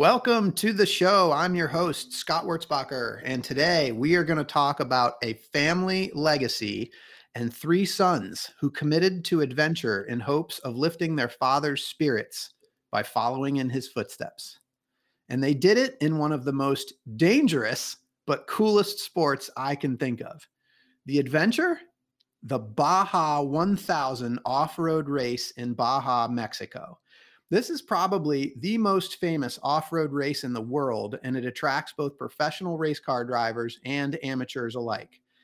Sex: male